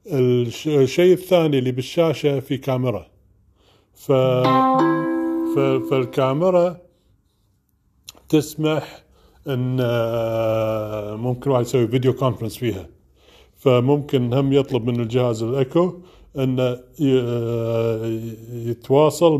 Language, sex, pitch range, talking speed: Arabic, male, 115-145 Hz, 80 wpm